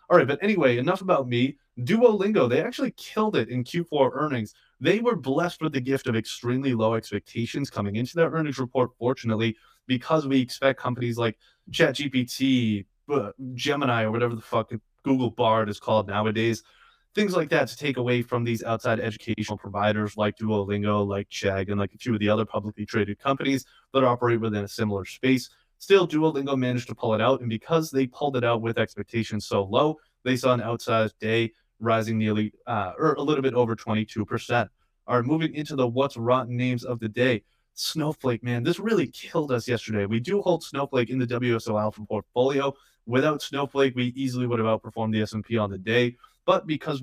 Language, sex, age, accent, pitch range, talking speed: English, male, 20-39, American, 115-140 Hz, 190 wpm